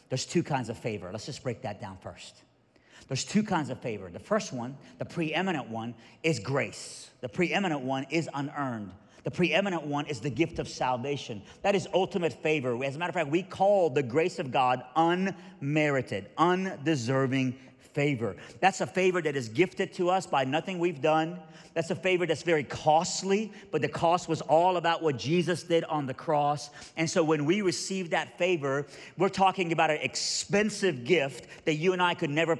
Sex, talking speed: male, 190 wpm